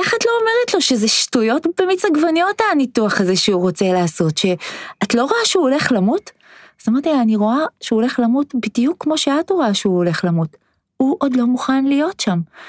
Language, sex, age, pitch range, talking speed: Hebrew, female, 20-39, 185-250 Hz, 195 wpm